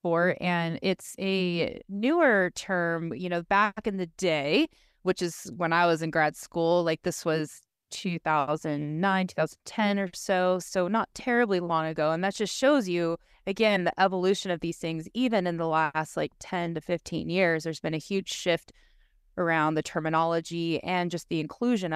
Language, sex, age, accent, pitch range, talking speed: English, female, 20-39, American, 165-215 Hz, 170 wpm